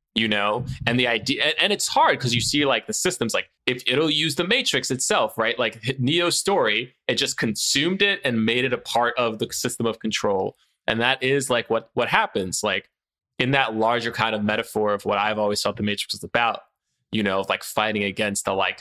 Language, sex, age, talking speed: English, male, 20-39, 225 wpm